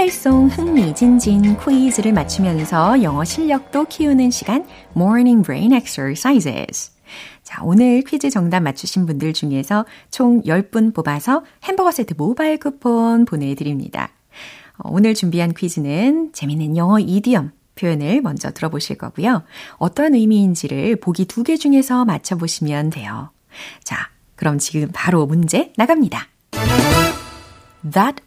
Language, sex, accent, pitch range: Korean, female, native, 165-265 Hz